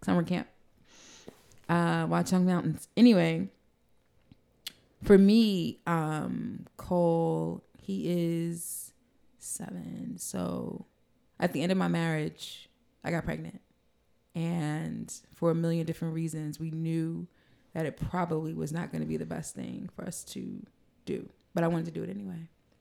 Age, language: 20-39, English